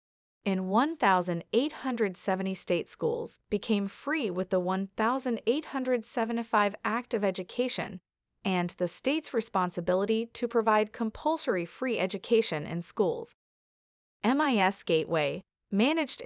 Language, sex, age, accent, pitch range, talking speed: English, female, 30-49, American, 185-245 Hz, 95 wpm